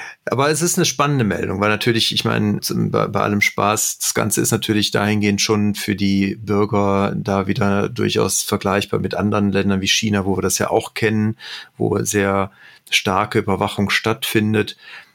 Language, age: German, 40-59